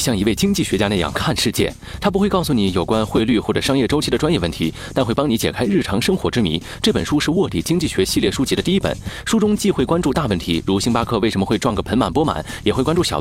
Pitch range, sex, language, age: 100-160 Hz, male, Chinese, 30-49